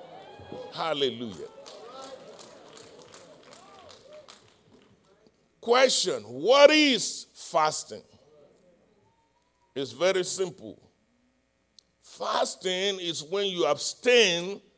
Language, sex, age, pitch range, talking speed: English, male, 60-79, 150-240 Hz, 55 wpm